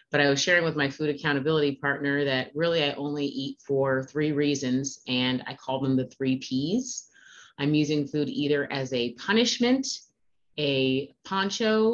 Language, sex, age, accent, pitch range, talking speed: English, female, 30-49, American, 135-160 Hz, 165 wpm